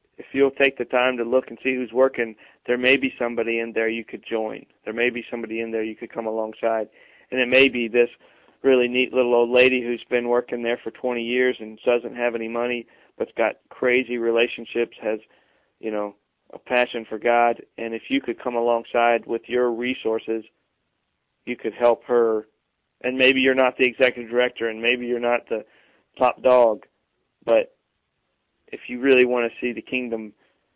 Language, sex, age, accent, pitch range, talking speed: English, male, 40-59, American, 115-130 Hz, 195 wpm